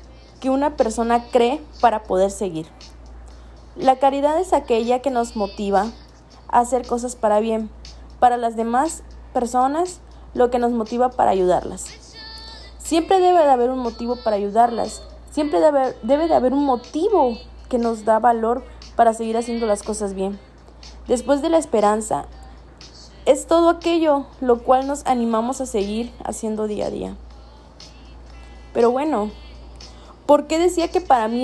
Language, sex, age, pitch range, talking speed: Spanish, female, 20-39, 205-265 Hz, 150 wpm